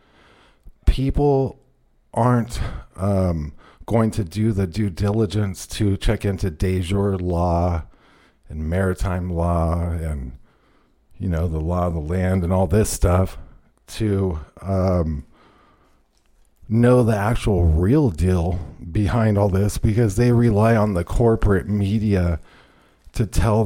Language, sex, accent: English, male, American